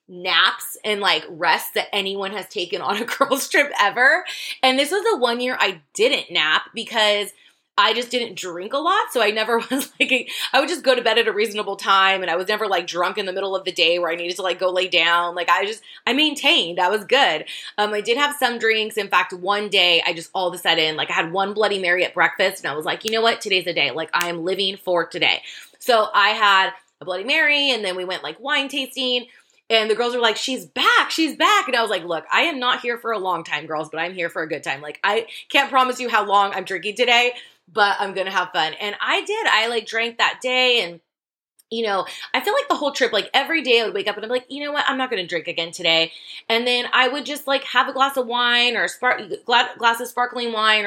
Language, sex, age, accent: English, female, 20-39, American